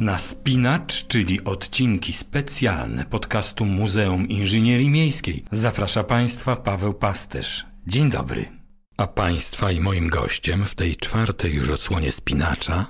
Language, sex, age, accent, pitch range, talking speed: Polish, male, 50-69, native, 90-110 Hz, 120 wpm